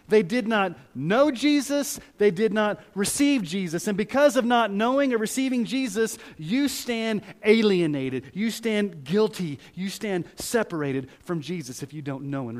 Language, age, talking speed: English, 30-49, 160 wpm